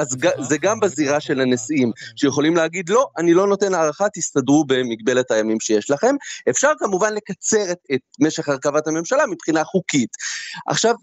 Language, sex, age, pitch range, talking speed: Hebrew, male, 30-49, 130-205 Hz, 160 wpm